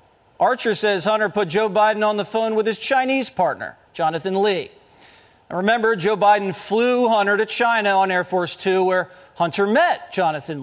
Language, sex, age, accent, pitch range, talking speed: English, male, 40-59, American, 185-230 Hz, 170 wpm